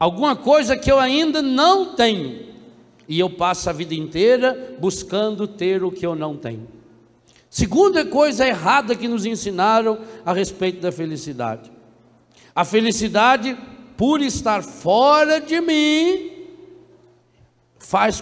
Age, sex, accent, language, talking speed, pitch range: 60-79, male, Brazilian, Portuguese, 125 wpm, 170-260 Hz